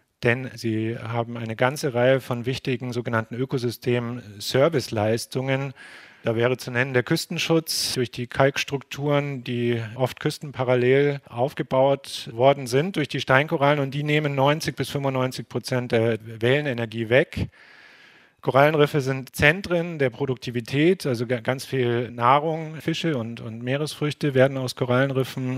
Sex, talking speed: male, 130 wpm